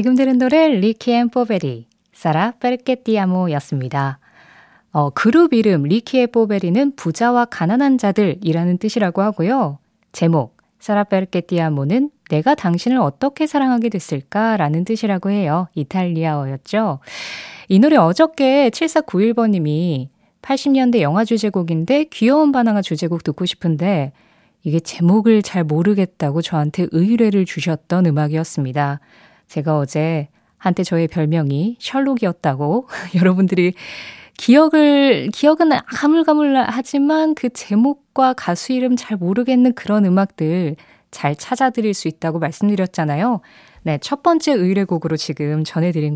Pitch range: 160-240 Hz